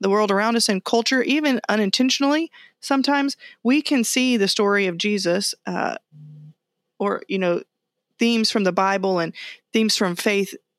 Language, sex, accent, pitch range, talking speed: English, female, American, 185-240 Hz, 155 wpm